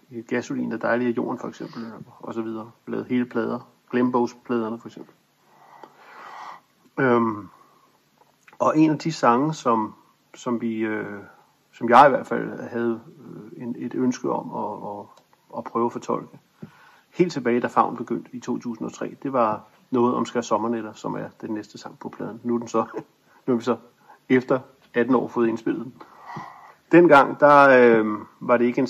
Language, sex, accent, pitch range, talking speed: Danish, male, native, 115-125 Hz, 170 wpm